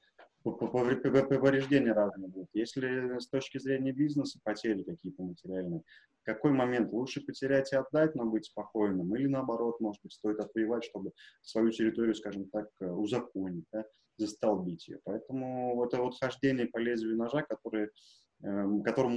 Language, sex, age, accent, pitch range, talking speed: Russian, male, 20-39, native, 105-135 Hz, 130 wpm